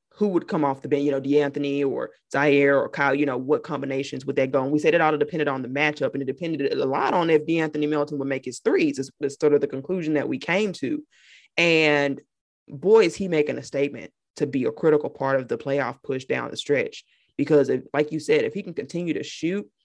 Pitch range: 145-185 Hz